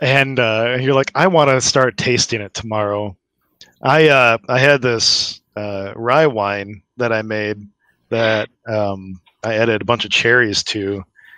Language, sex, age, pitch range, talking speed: English, male, 20-39, 100-120 Hz, 165 wpm